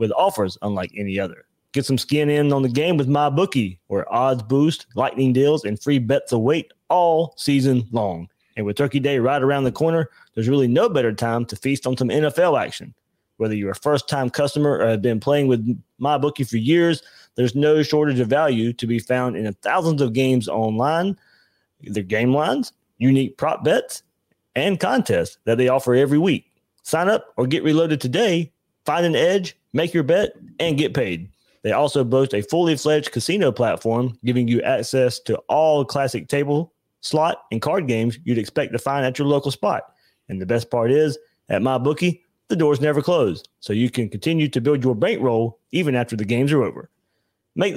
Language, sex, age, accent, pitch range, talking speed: English, male, 30-49, American, 120-150 Hz, 190 wpm